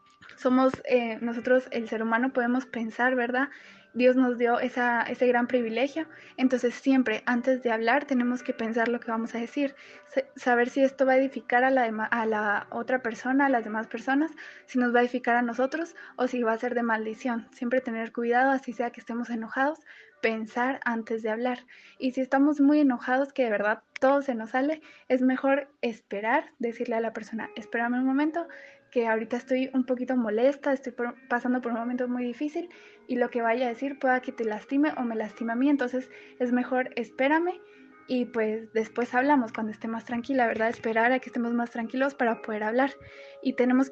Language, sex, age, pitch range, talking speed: Spanish, female, 20-39, 230-265 Hz, 200 wpm